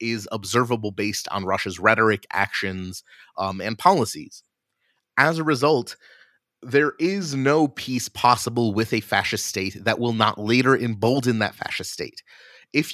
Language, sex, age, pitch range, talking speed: English, male, 30-49, 105-125 Hz, 145 wpm